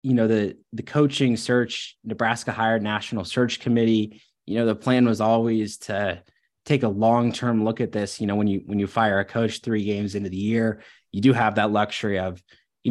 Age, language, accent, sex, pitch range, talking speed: 20-39, English, American, male, 105-120 Hz, 210 wpm